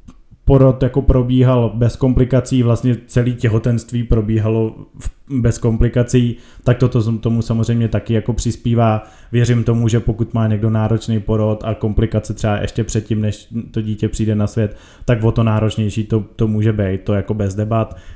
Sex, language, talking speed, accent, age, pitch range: male, Czech, 165 wpm, native, 20-39, 105-120 Hz